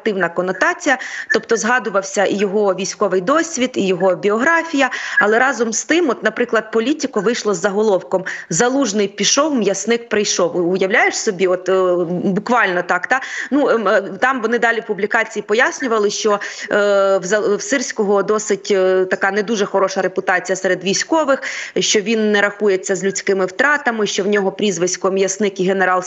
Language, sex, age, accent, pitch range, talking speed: Ukrainian, female, 30-49, native, 200-250 Hz, 145 wpm